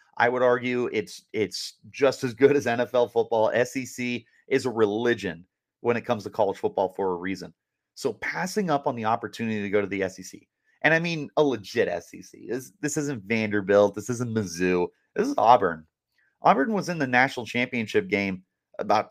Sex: male